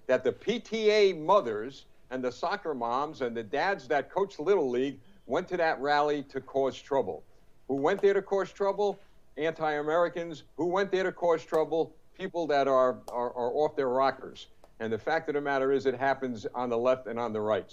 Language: English